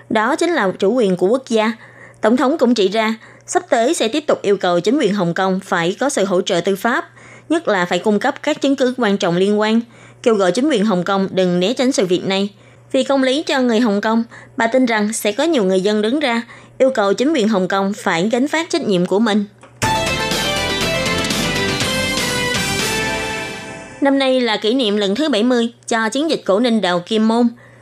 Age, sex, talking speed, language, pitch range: 20-39, female, 220 wpm, Vietnamese, 195-255 Hz